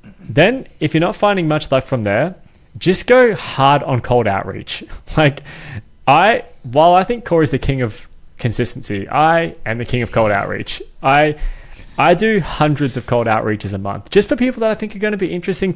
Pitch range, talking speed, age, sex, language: 115-170 Hz, 200 wpm, 20-39, male, English